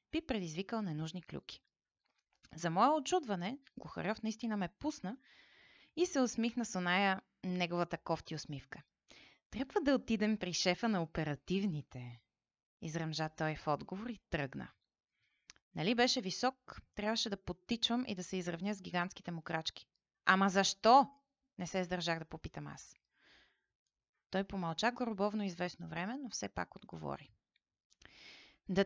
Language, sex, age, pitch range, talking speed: Bulgarian, female, 30-49, 170-220 Hz, 130 wpm